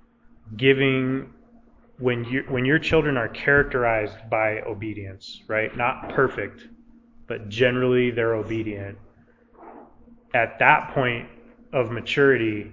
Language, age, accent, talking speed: English, 20-39, American, 105 wpm